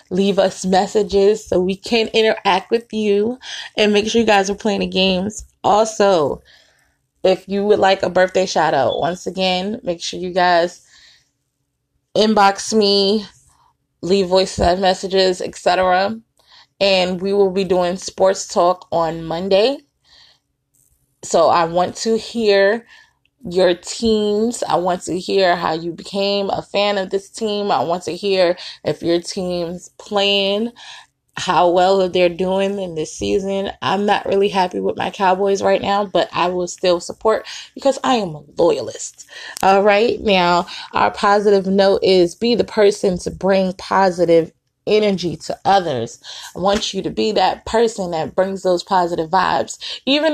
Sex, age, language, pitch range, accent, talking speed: female, 20-39, English, 180-210 Hz, American, 155 wpm